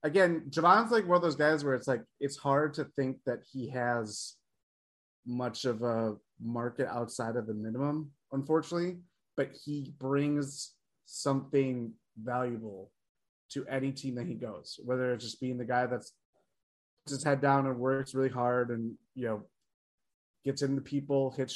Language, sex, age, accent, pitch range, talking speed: English, male, 20-39, American, 125-155 Hz, 165 wpm